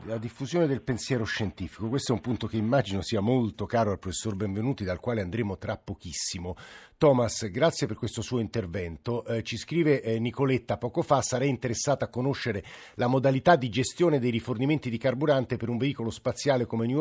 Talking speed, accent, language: 185 wpm, native, Italian